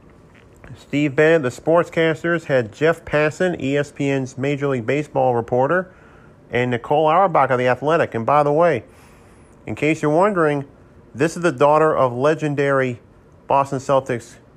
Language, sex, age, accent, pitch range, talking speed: English, male, 40-59, American, 115-145 Hz, 140 wpm